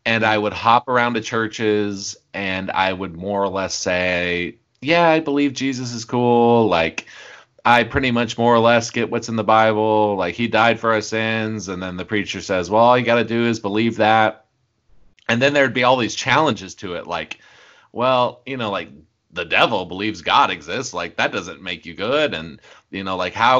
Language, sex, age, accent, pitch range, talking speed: English, male, 30-49, American, 95-115 Hz, 210 wpm